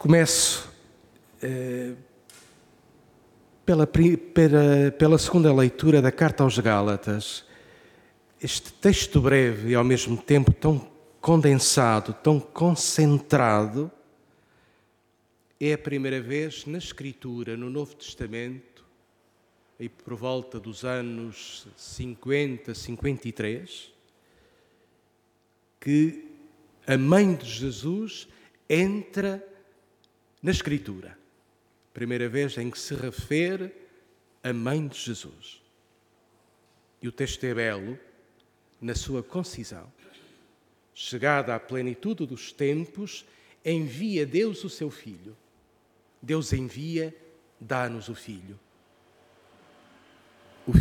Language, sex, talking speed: Portuguese, male, 95 wpm